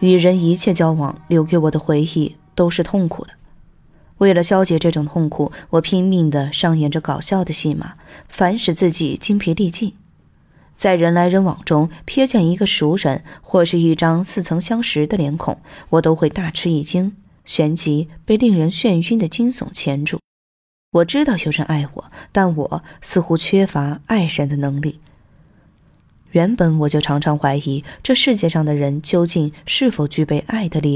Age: 20-39